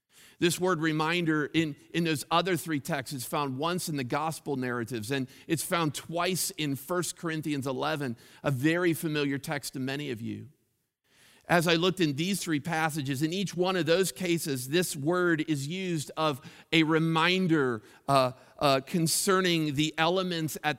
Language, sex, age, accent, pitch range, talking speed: English, male, 50-69, American, 135-165 Hz, 165 wpm